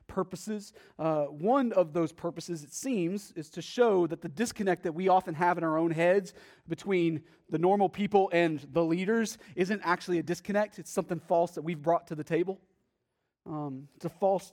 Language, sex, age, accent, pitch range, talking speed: English, male, 30-49, American, 185-265 Hz, 190 wpm